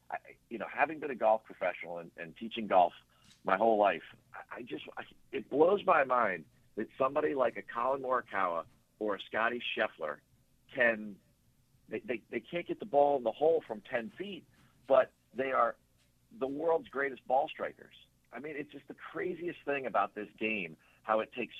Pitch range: 100-135 Hz